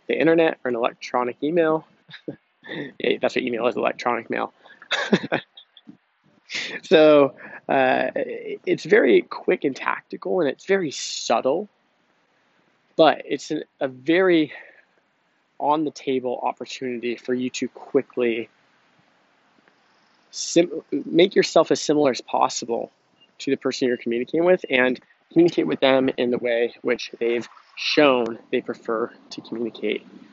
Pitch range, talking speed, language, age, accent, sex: 125-150 Hz, 125 wpm, English, 20-39, American, male